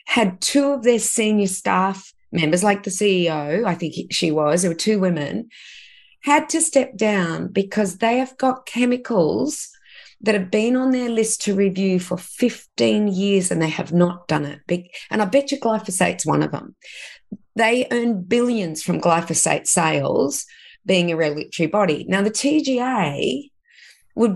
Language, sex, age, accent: English, female, 30-49, Australian